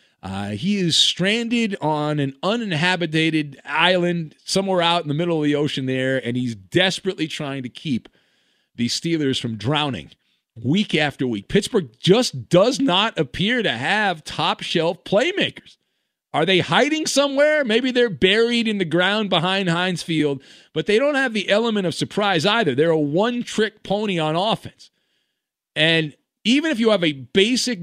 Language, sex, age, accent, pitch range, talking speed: English, male, 40-59, American, 135-210 Hz, 160 wpm